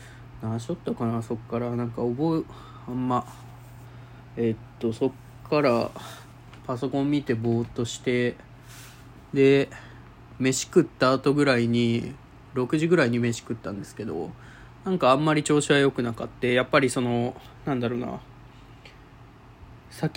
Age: 20-39